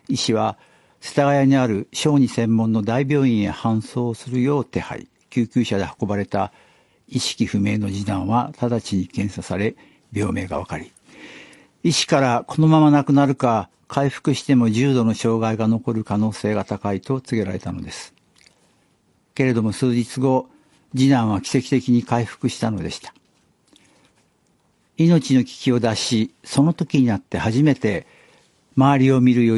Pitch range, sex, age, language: 110-135 Hz, male, 60-79, Japanese